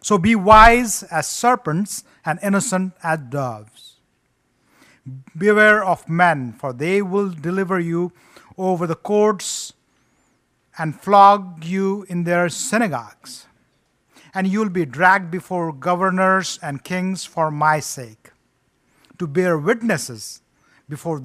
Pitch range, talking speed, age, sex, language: 150-195 Hz, 120 wpm, 50-69, male, English